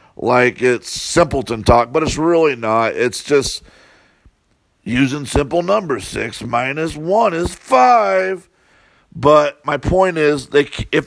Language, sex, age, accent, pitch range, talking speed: English, male, 50-69, American, 115-175 Hz, 130 wpm